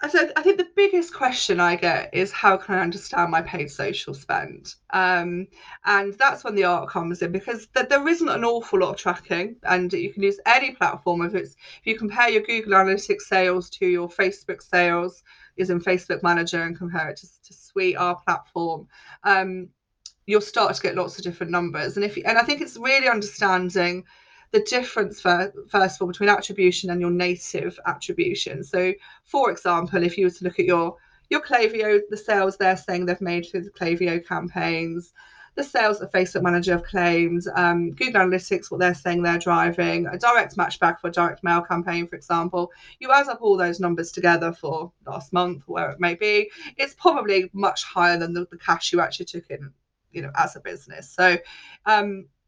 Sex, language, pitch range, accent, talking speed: female, English, 175-205 Hz, British, 200 wpm